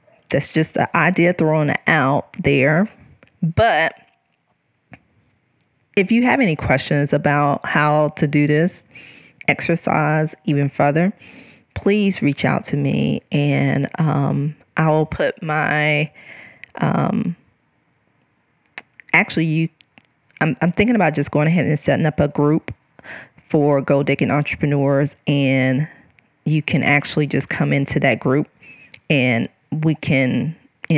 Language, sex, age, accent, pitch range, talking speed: English, female, 40-59, American, 140-170 Hz, 125 wpm